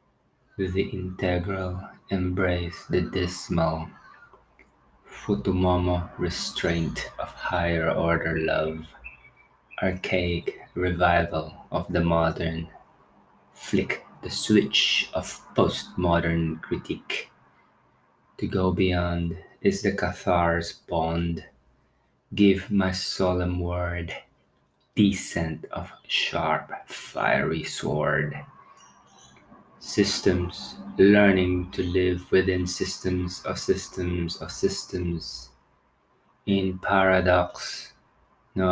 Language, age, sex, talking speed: English, 20-39, male, 75 wpm